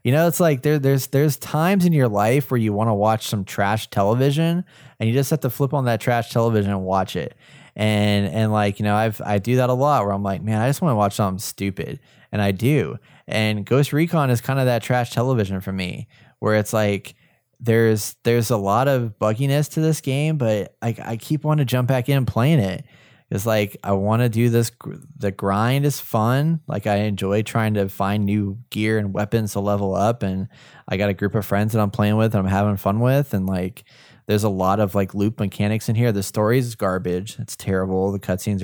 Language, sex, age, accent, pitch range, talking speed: English, male, 20-39, American, 100-125 Hz, 235 wpm